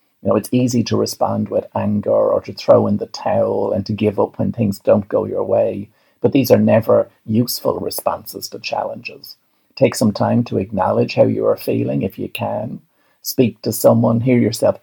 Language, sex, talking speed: English, male, 200 wpm